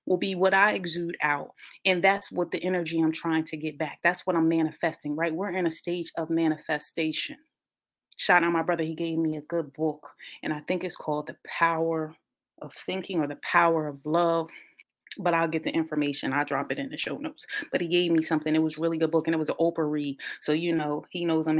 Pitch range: 155-175 Hz